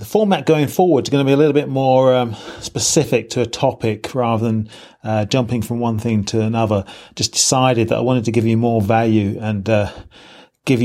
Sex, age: male, 30-49